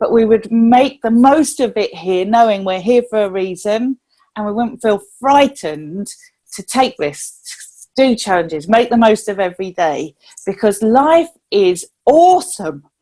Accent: British